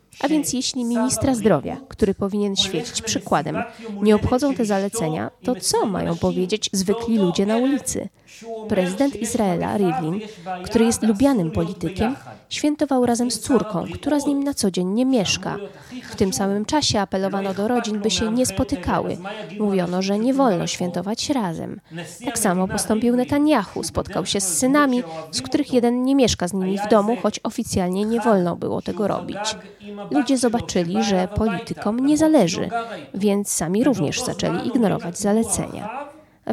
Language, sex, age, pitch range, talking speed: Polish, female, 20-39, 190-245 Hz, 155 wpm